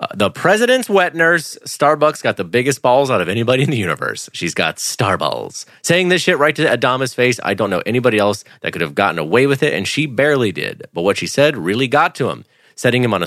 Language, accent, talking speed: English, American, 250 wpm